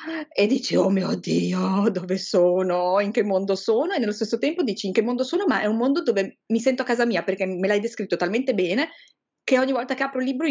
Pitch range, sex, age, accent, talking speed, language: 175-255 Hz, female, 30-49, native, 245 wpm, Italian